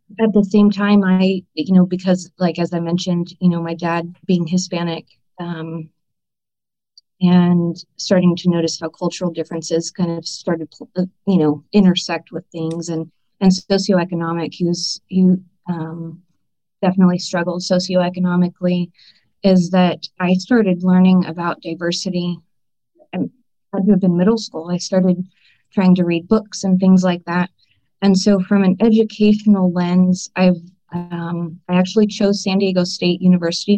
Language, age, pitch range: English, 30-49, 170-185 Hz